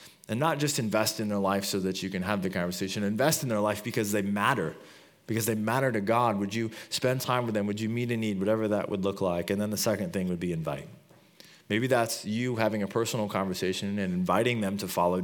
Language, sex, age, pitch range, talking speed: English, male, 20-39, 95-115 Hz, 245 wpm